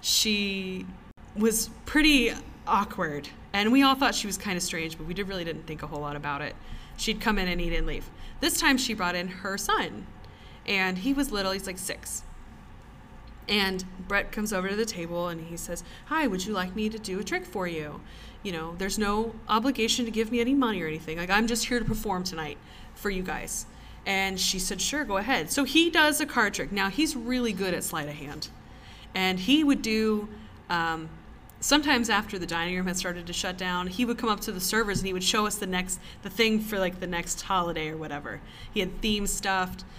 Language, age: English, 20-39